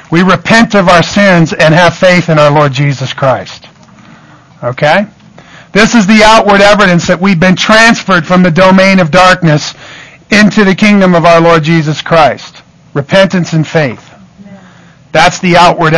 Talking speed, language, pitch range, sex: 160 wpm, English, 170-215 Hz, male